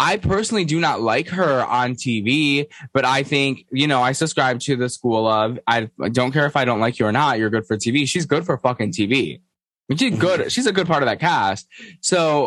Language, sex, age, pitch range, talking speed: English, male, 20-39, 100-135 Hz, 230 wpm